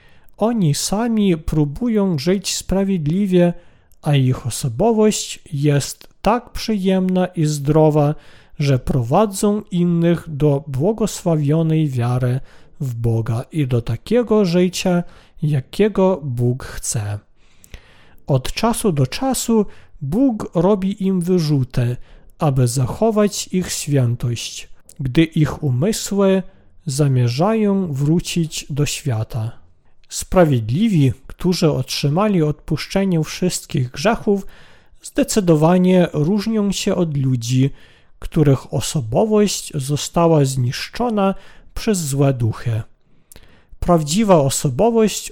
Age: 40-59